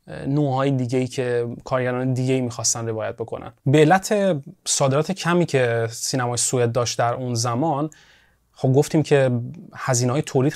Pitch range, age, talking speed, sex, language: 125-155 Hz, 20-39, 140 wpm, male, Persian